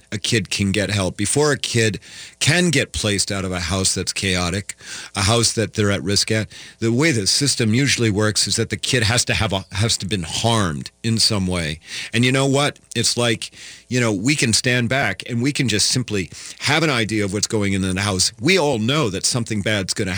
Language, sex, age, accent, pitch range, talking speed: English, male, 40-59, American, 95-120 Hz, 230 wpm